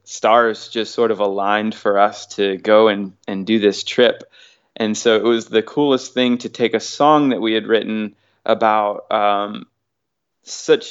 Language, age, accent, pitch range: English, 20-39, American, 105-120 Hz